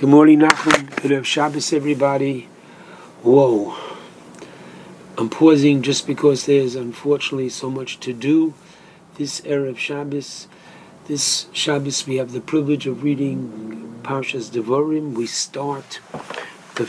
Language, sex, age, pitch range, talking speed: English, male, 60-79, 125-145 Hz, 115 wpm